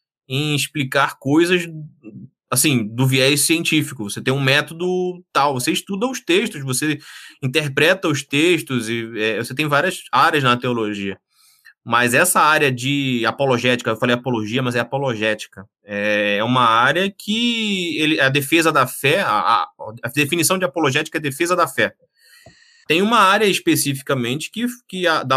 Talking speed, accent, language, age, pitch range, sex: 155 wpm, Brazilian, Portuguese, 20-39, 120-165 Hz, male